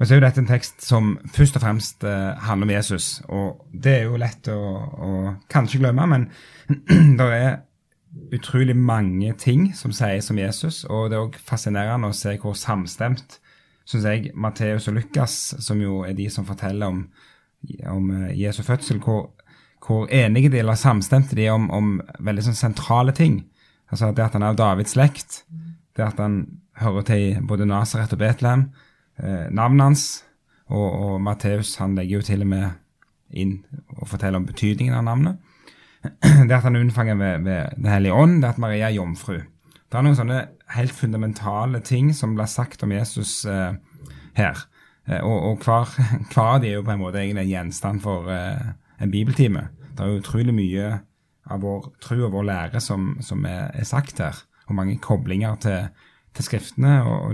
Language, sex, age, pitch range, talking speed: English, male, 10-29, 100-130 Hz, 175 wpm